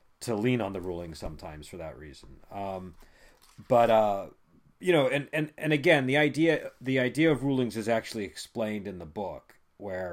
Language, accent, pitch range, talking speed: English, American, 95-130 Hz, 185 wpm